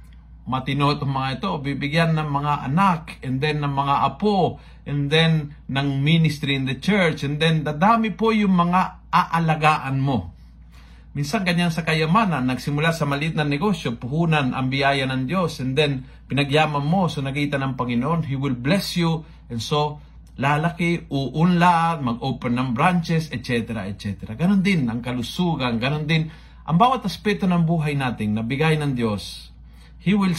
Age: 50-69